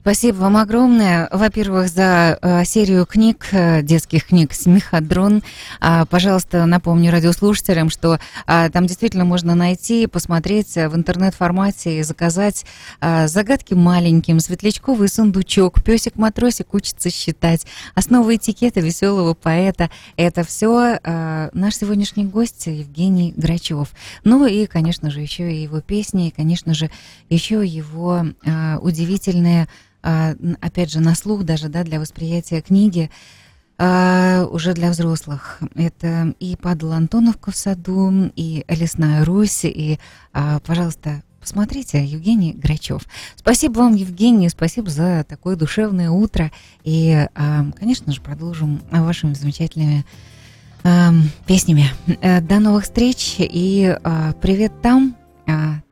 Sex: female